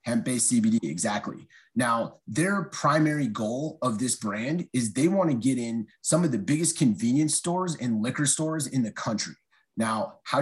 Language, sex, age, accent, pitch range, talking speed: English, male, 30-49, American, 115-160 Hz, 165 wpm